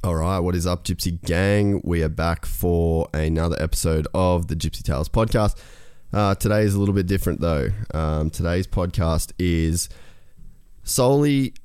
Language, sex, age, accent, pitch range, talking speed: English, male, 20-39, Australian, 85-95 Hz, 155 wpm